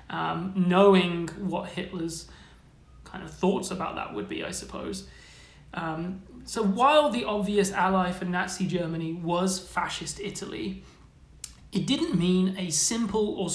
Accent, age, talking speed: British, 30-49, 135 wpm